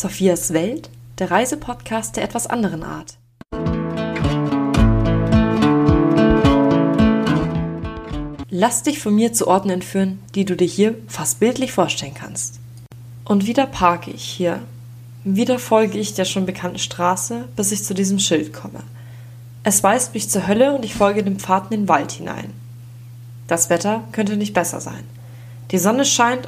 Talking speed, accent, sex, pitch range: 145 wpm, German, female, 120-200 Hz